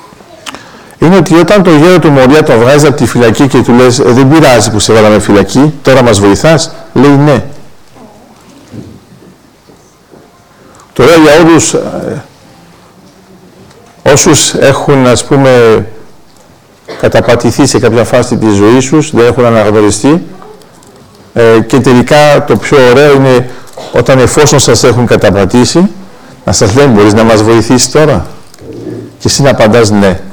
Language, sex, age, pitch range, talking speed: Greek, male, 50-69, 110-140 Hz, 135 wpm